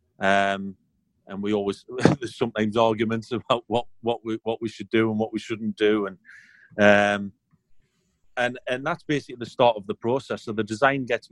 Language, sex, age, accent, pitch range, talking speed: English, male, 30-49, British, 100-115 Hz, 185 wpm